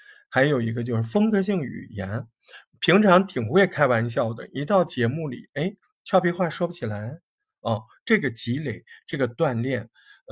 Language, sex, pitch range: Chinese, male, 115-175 Hz